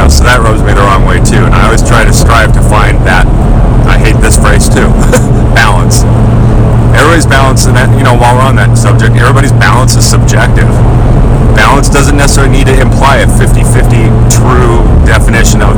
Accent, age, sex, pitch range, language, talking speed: American, 30-49, male, 110-120 Hz, English, 185 wpm